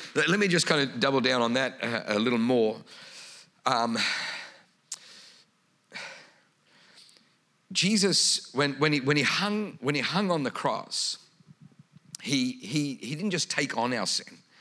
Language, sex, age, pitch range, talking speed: English, male, 50-69, 110-170 Hz, 145 wpm